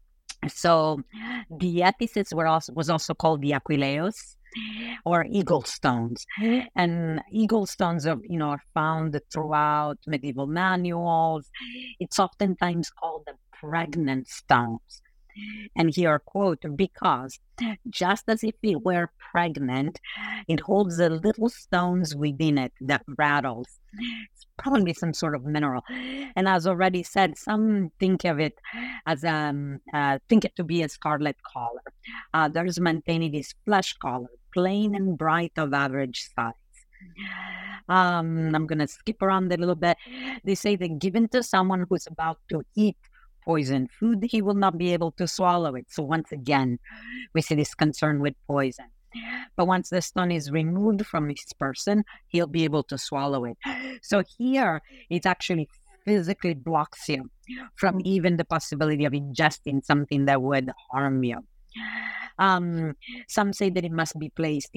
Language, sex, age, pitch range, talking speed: English, female, 50-69, 150-195 Hz, 155 wpm